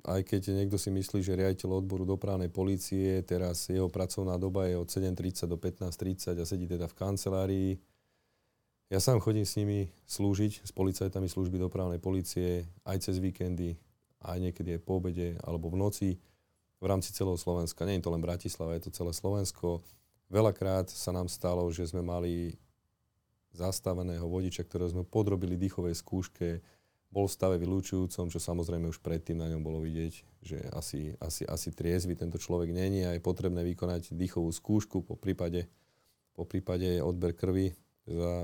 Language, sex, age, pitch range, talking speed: Slovak, male, 30-49, 85-95 Hz, 165 wpm